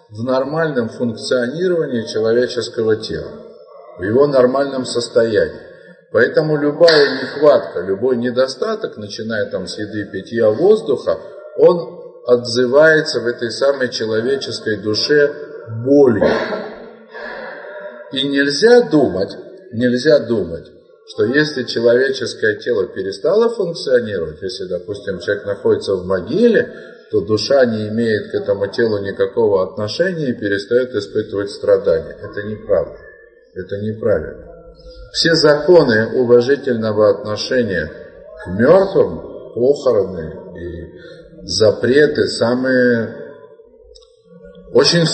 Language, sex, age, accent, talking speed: Russian, male, 50-69, native, 95 wpm